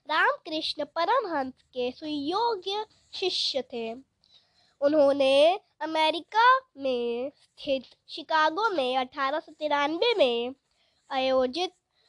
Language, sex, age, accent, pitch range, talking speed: Hindi, female, 20-39, native, 255-345 Hz, 75 wpm